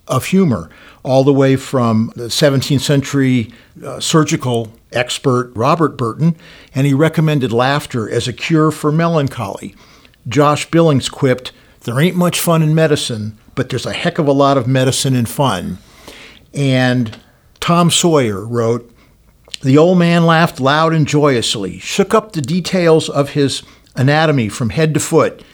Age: 60-79